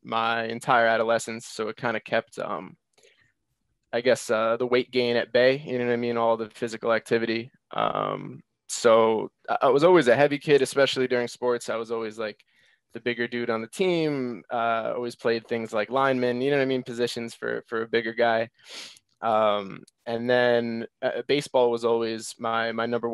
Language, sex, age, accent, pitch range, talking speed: English, male, 20-39, American, 115-125 Hz, 190 wpm